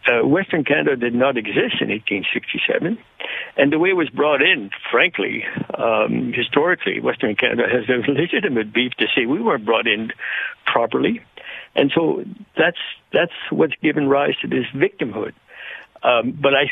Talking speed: 165 wpm